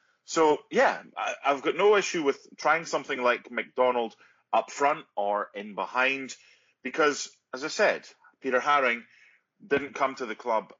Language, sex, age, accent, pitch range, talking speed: English, male, 30-49, British, 115-180 Hz, 150 wpm